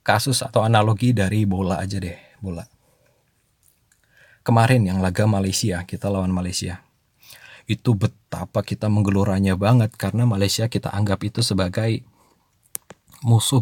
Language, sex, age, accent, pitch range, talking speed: Indonesian, male, 20-39, native, 105-135 Hz, 120 wpm